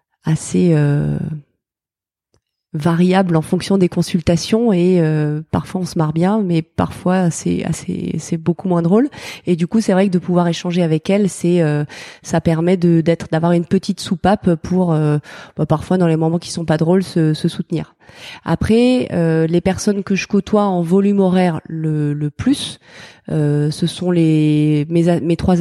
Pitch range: 155-185 Hz